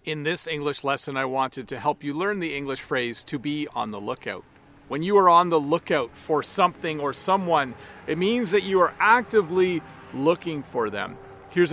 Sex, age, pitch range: male, 40-59, 135-175 Hz